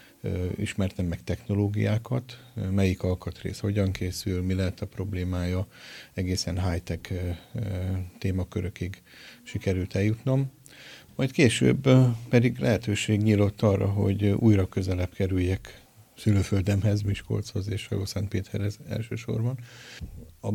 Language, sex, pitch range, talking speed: Hungarian, male, 95-115 Hz, 100 wpm